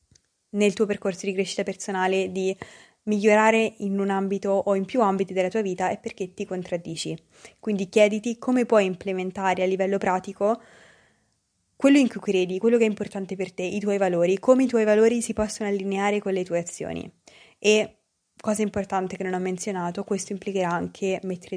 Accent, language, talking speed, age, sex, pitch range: native, Italian, 180 wpm, 20-39, female, 185-210 Hz